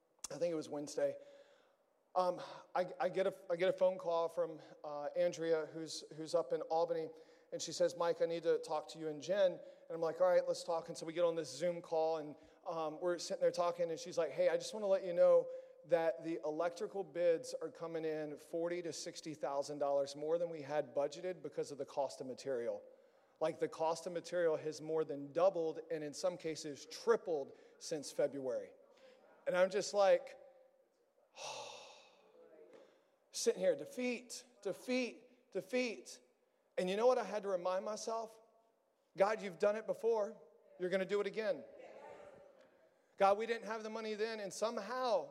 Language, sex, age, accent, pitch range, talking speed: English, male, 40-59, American, 170-275 Hz, 190 wpm